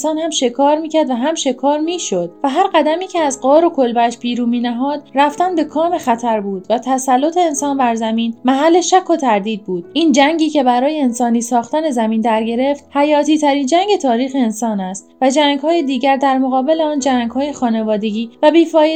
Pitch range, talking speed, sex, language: 230-295 Hz, 190 wpm, female, Persian